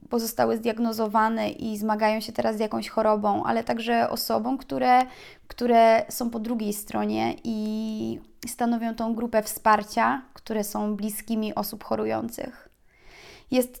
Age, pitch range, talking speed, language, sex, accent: 20-39, 215-245 Hz, 125 wpm, Polish, female, native